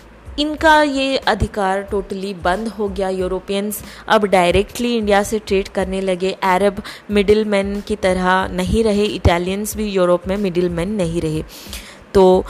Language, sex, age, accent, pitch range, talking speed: Hindi, female, 20-39, native, 190-230 Hz, 140 wpm